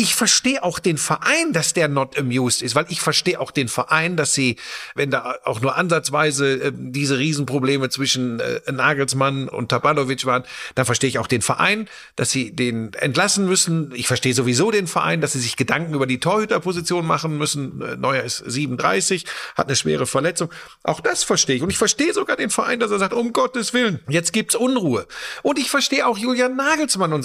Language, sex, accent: German, male, German